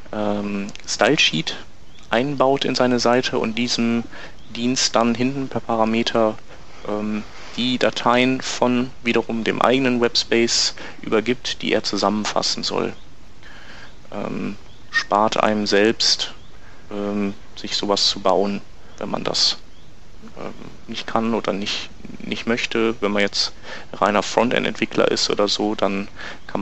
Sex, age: male, 30-49